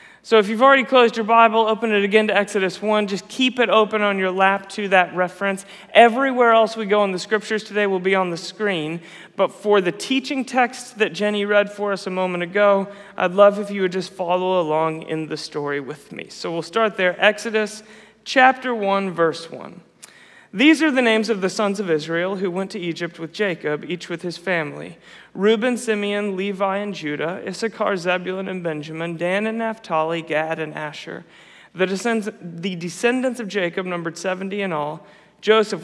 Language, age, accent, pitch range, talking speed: English, 30-49, American, 175-215 Hz, 190 wpm